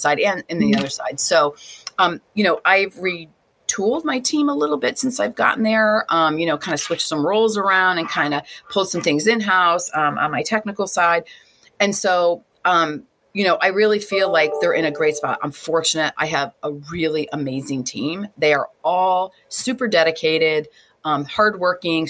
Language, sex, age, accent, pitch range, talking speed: English, female, 30-49, American, 150-190 Hz, 195 wpm